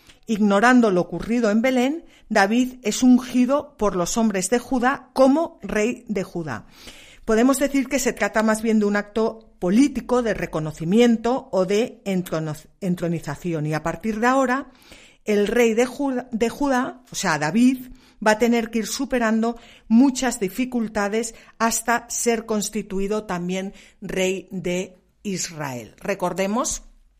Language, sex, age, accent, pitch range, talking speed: Spanish, female, 50-69, Spanish, 175-235 Hz, 135 wpm